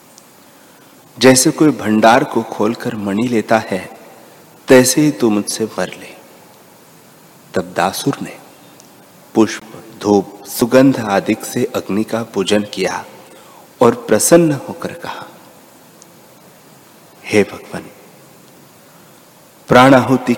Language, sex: Hindi, male